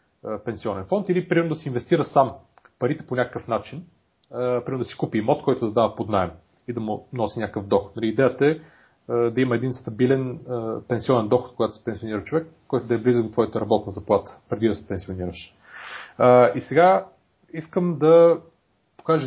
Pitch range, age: 115-155 Hz, 30-49